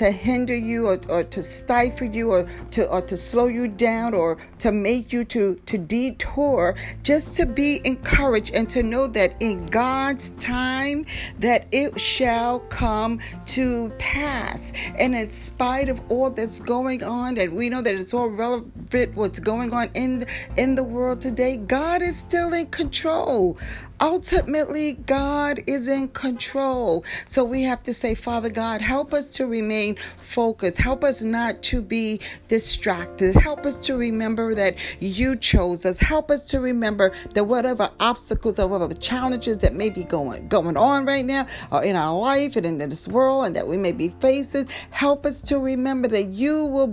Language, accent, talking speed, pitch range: English, American, 175 wpm, 215-270 Hz